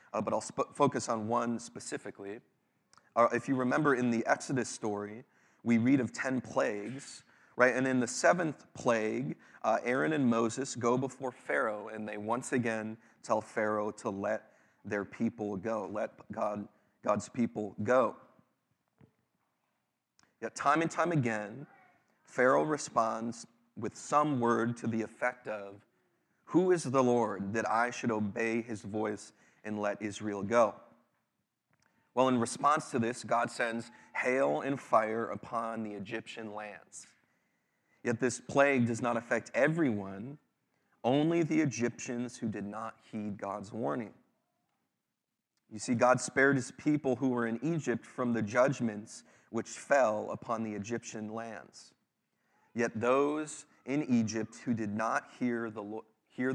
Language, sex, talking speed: English, male, 140 wpm